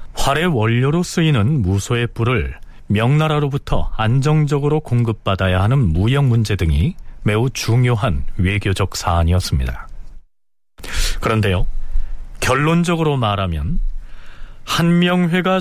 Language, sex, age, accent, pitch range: Korean, male, 40-59, native, 95-150 Hz